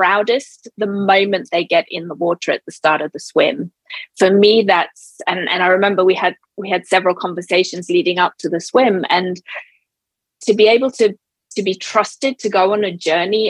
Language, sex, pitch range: English, female, 180-215 Hz